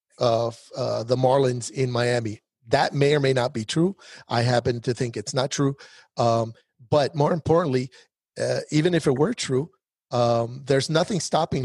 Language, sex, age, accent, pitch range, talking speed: English, male, 40-59, American, 120-140 Hz, 175 wpm